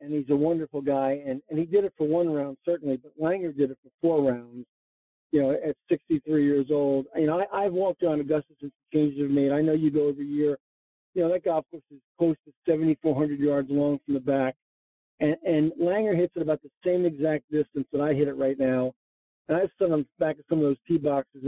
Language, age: English, 50-69